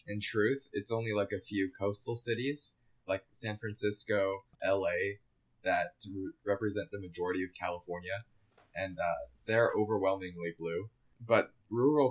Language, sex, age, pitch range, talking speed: English, male, 20-39, 100-115 Hz, 130 wpm